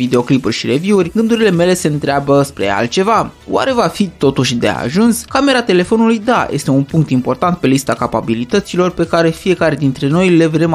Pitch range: 135-185 Hz